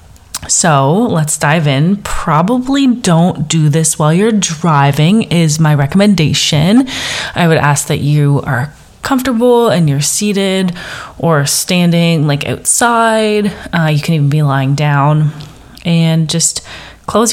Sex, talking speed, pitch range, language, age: female, 130 wpm, 140-175 Hz, English, 30-49